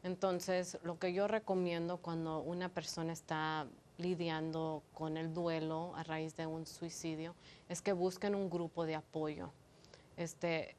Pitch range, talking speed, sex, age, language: 160-185 Hz, 145 wpm, female, 30-49, Spanish